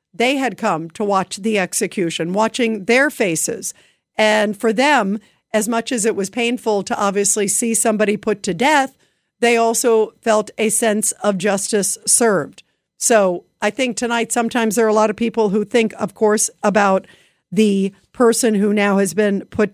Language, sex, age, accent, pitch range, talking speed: English, female, 50-69, American, 195-230 Hz, 175 wpm